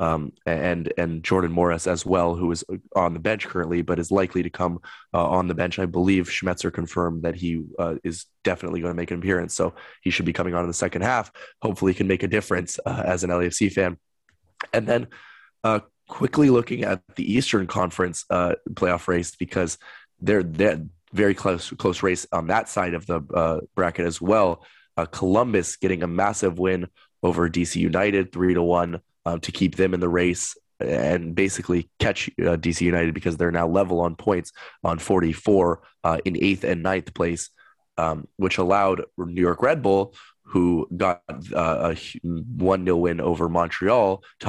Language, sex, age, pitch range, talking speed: English, male, 20-39, 85-95 Hz, 190 wpm